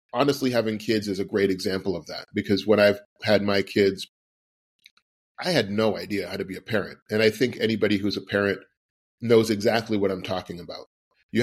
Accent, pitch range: American, 100-120 Hz